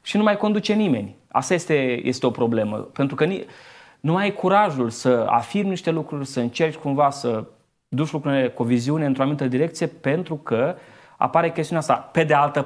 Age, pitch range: 20-39, 125-165 Hz